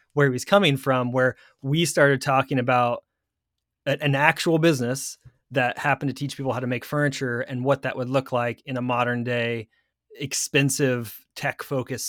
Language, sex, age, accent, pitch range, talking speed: English, male, 30-49, American, 120-140 Hz, 175 wpm